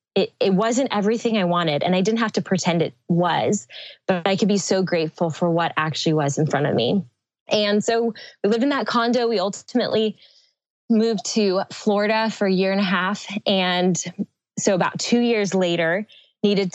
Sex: female